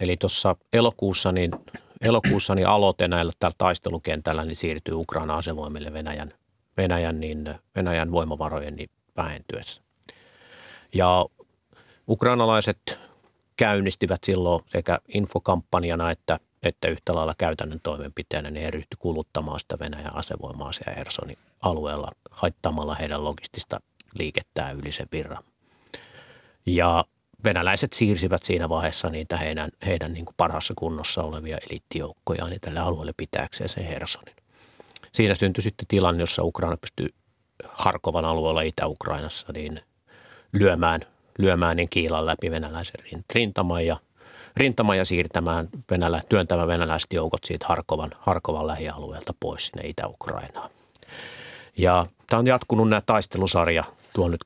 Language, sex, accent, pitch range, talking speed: Finnish, male, native, 80-95 Hz, 120 wpm